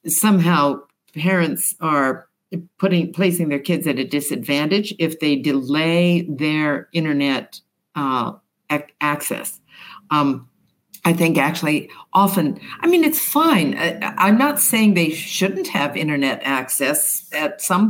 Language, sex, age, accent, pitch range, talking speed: English, female, 60-79, American, 155-195 Hz, 125 wpm